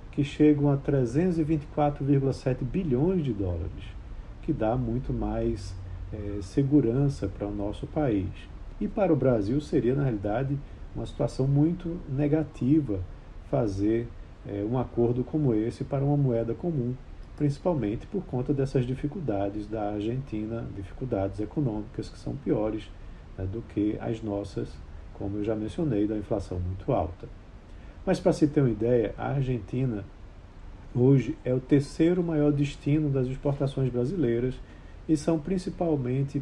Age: 50-69